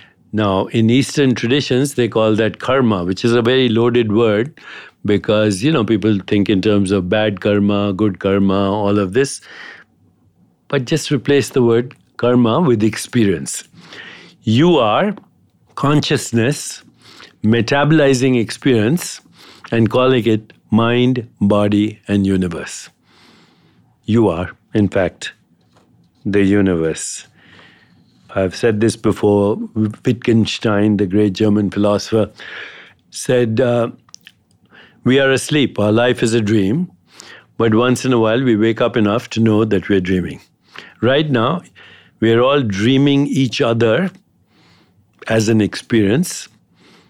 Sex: male